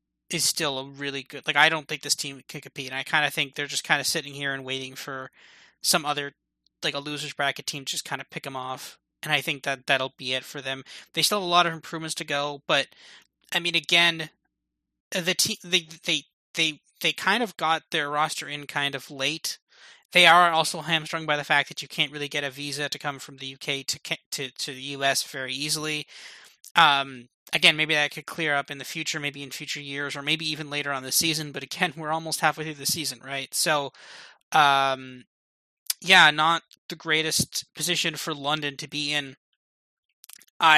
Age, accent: 20-39, American